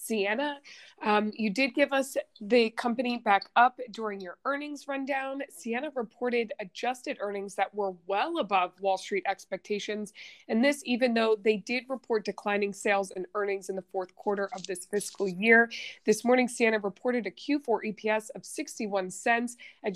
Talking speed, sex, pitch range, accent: 165 wpm, female, 200-250 Hz, American